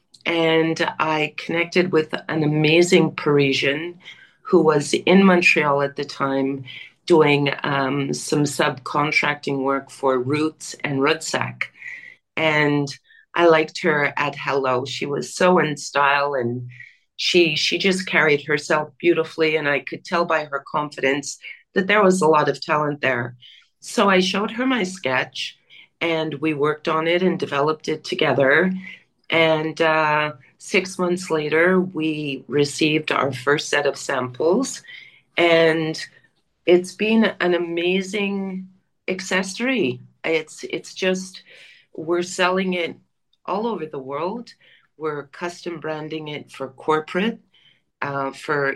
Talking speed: 130 wpm